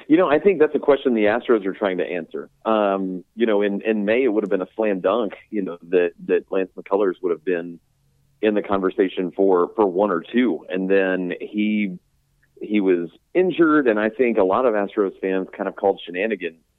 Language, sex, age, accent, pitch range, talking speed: English, male, 40-59, American, 95-120 Hz, 220 wpm